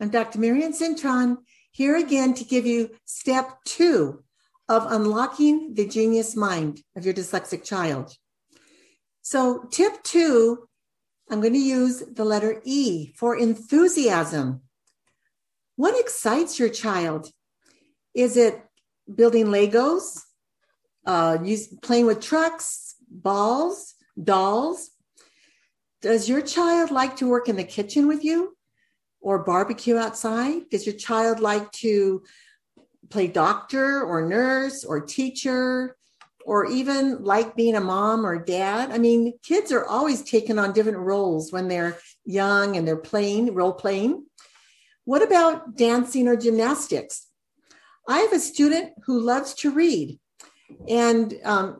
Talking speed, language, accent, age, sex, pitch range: 130 wpm, English, American, 60-79, female, 205-290 Hz